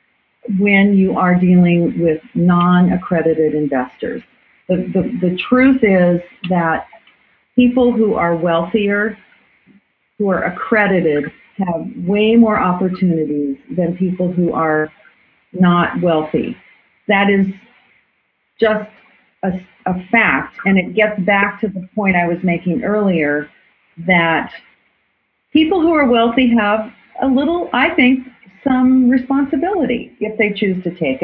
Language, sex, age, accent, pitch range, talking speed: English, female, 40-59, American, 175-230 Hz, 125 wpm